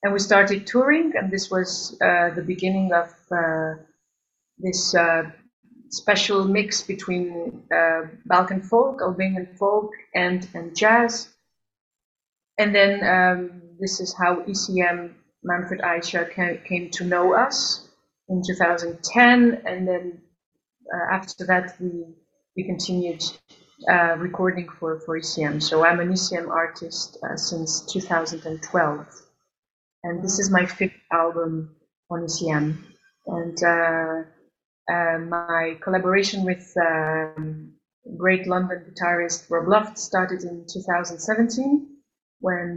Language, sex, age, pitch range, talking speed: English, female, 30-49, 165-190 Hz, 120 wpm